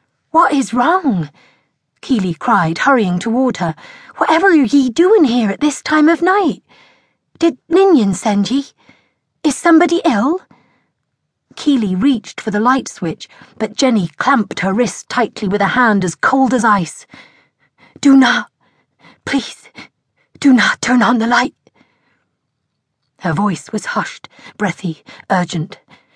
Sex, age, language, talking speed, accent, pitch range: female, 40-59, English, 135 wpm, British, 185-265 Hz